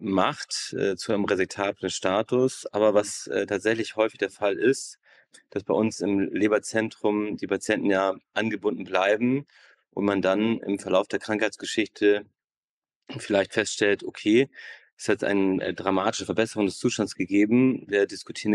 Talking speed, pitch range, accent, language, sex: 145 wpm, 95-110 Hz, German, German, male